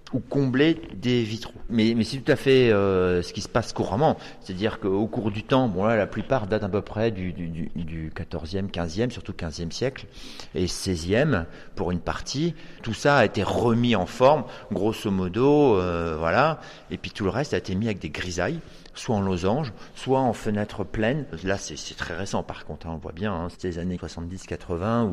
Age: 50-69